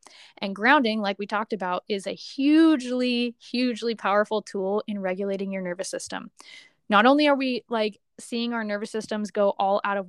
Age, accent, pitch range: 10-29, American, 200-235 Hz